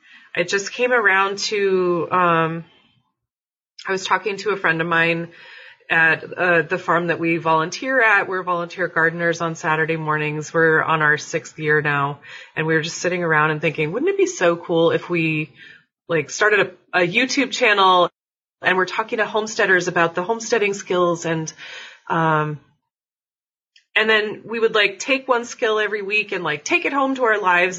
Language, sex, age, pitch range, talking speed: English, female, 30-49, 165-220 Hz, 175 wpm